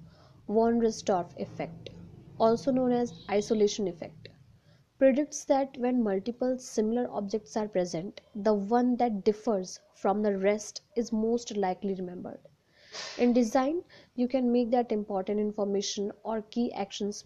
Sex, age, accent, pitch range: female, 20-39, native, 185-240 Hz